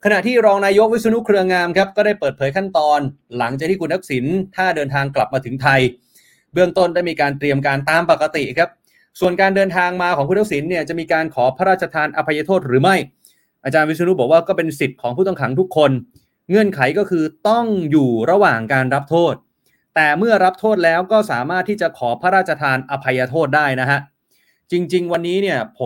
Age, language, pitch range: 20-39, Thai, 140-185 Hz